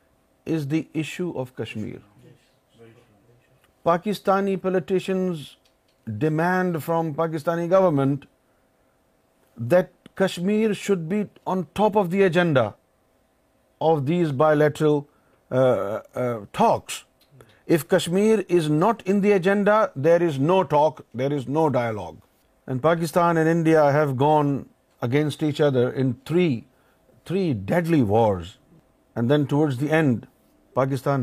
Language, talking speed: Urdu, 115 wpm